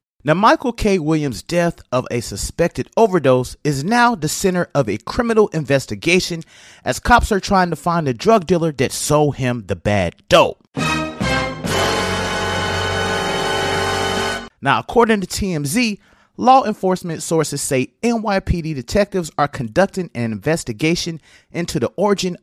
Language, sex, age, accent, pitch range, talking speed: English, male, 30-49, American, 120-185 Hz, 130 wpm